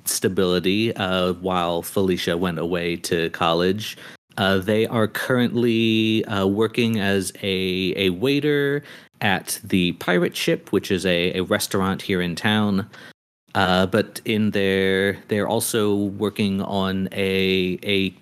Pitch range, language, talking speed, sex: 95-110 Hz, English, 130 wpm, male